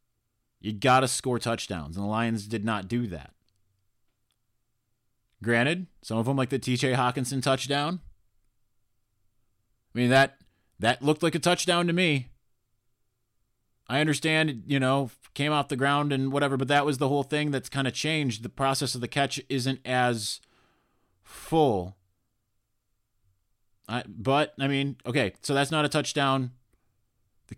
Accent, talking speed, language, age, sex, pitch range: American, 150 wpm, English, 30-49, male, 110-135 Hz